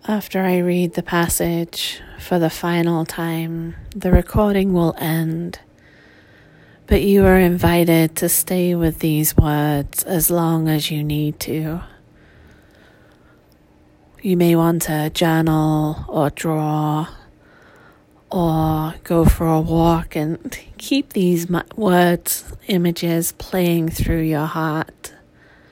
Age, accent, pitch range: 40-59, British, 145-175 Hz